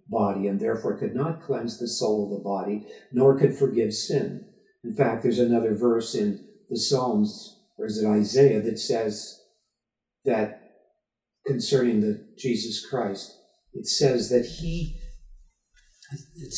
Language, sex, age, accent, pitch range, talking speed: English, male, 50-69, American, 110-175 Hz, 140 wpm